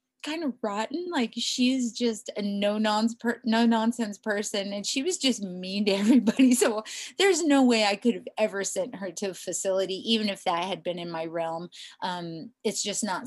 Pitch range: 195-245 Hz